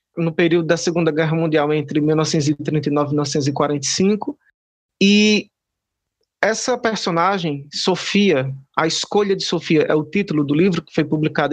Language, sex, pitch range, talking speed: Portuguese, male, 155-195 Hz, 135 wpm